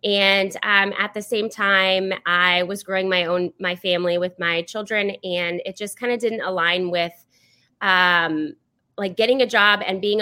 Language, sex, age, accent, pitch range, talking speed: English, female, 20-39, American, 180-215 Hz, 180 wpm